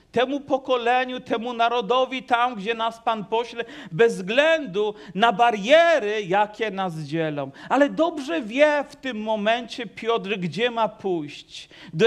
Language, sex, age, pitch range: Polish, male, 40-59, 225-265 Hz